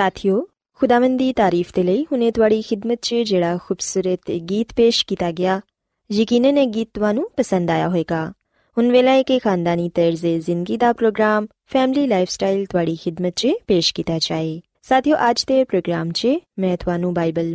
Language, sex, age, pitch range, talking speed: Punjabi, female, 20-39, 175-245 Hz, 105 wpm